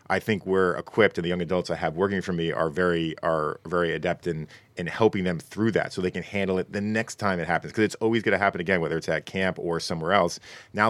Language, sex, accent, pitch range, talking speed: English, male, American, 85-100 Hz, 270 wpm